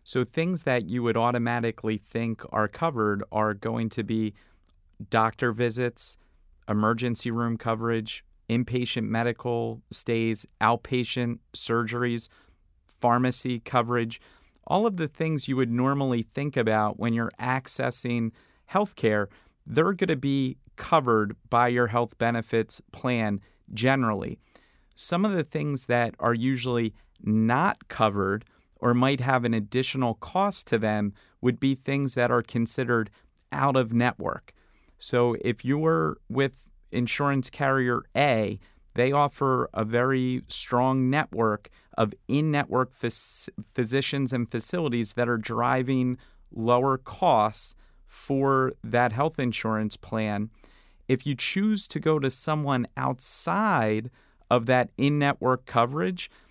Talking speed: 125 wpm